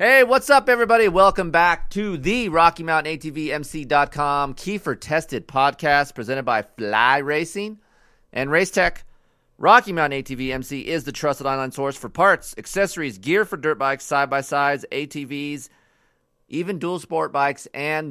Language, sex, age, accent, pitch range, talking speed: English, male, 30-49, American, 120-160 Hz, 145 wpm